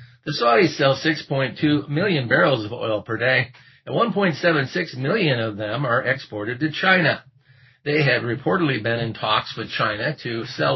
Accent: American